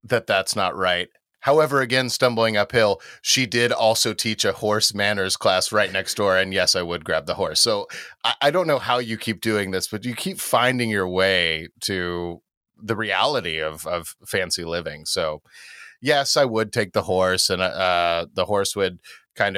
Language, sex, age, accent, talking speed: English, male, 30-49, American, 190 wpm